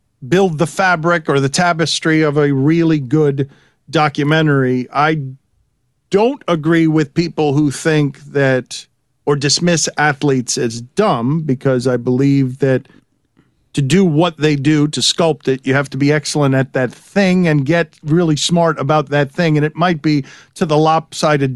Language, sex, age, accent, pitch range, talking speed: English, male, 50-69, American, 135-165 Hz, 160 wpm